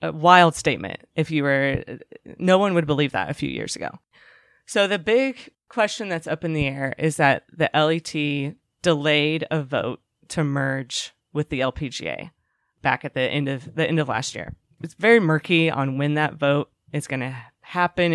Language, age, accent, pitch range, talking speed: English, 20-39, American, 135-165 Hz, 190 wpm